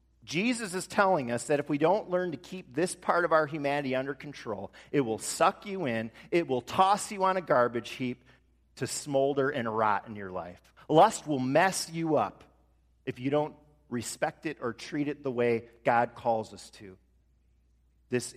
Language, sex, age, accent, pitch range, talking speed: English, male, 40-59, American, 110-160 Hz, 190 wpm